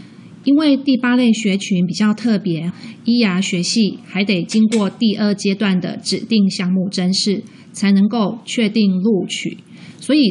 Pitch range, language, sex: 190-225 Hz, Chinese, female